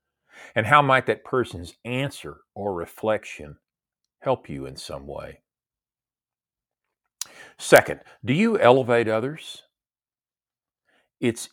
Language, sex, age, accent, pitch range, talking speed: English, male, 50-69, American, 90-125 Hz, 100 wpm